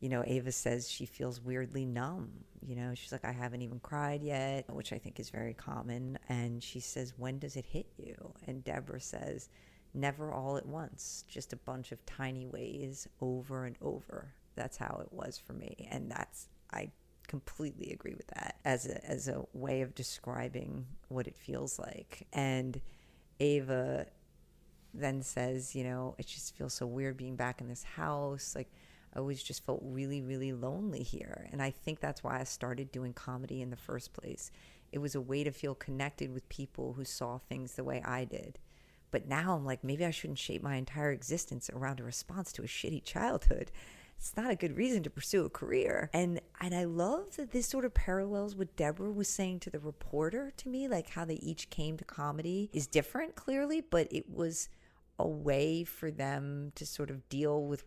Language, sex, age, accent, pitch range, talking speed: English, female, 40-59, American, 125-165 Hz, 200 wpm